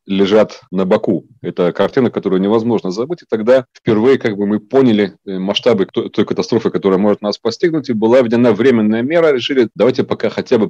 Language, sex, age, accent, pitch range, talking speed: Russian, male, 30-49, native, 100-120 Hz, 185 wpm